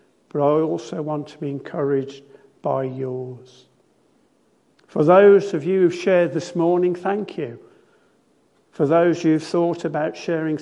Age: 50-69